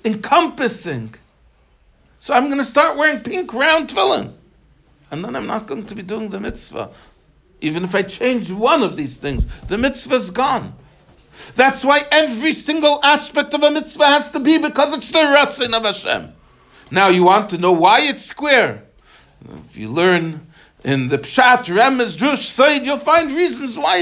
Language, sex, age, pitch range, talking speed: English, male, 60-79, 205-295 Hz, 175 wpm